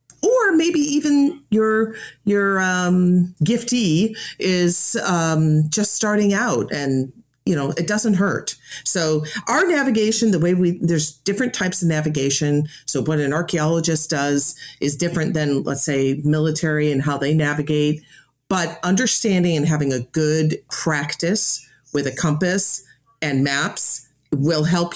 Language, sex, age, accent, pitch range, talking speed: English, female, 40-59, American, 140-195 Hz, 140 wpm